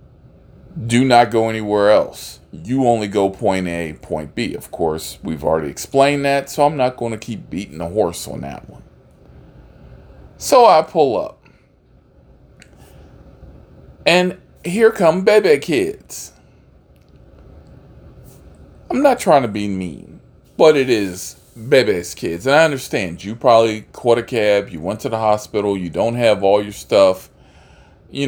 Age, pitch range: 40-59, 95-145 Hz